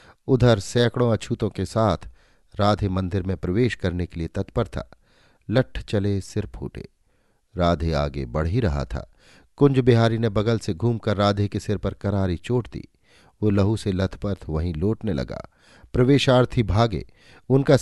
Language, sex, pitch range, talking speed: Hindi, male, 90-115 Hz, 160 wpm